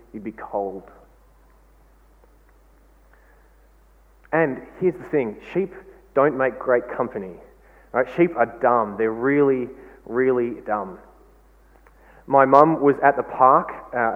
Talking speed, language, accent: 115 wpm, English, Australian